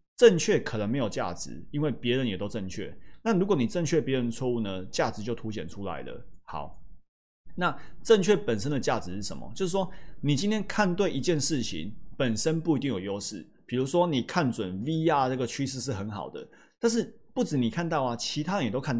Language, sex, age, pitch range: Chinese, male, 30-49, 110-165 Hz